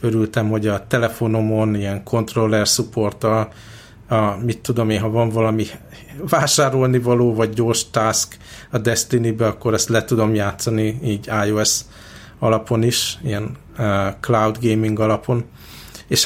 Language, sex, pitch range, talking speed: Hungarian, male, 110-120 Hz, 130 wpm